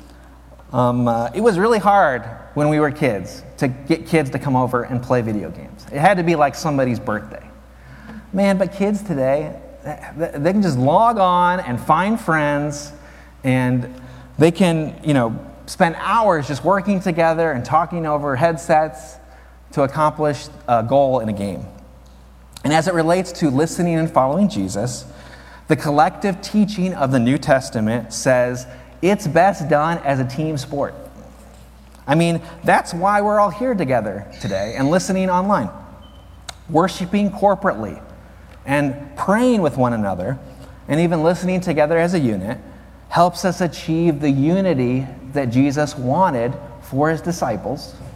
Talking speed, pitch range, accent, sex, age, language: 150 wpm, 125-180 Hz, American, male, 30-49, English